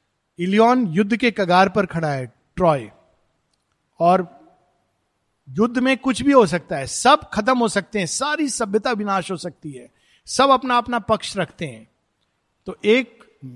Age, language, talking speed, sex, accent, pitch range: 50-69, Hindi, 155 wpm, male, native, 175-245 Hz